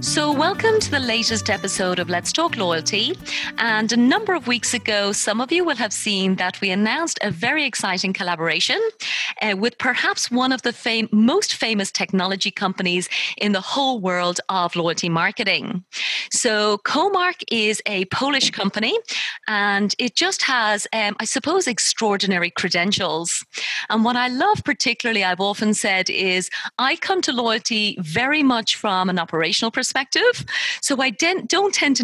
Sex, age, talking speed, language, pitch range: female, 30-49, 165 wpm, English, 195-265 Hz